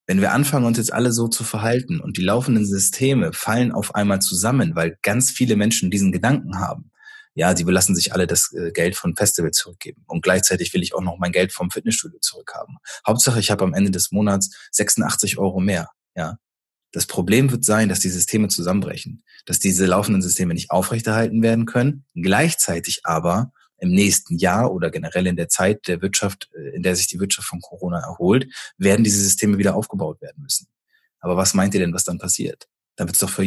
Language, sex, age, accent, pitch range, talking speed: German, male, 20-39, German, 95-115 Hz, 200 wpm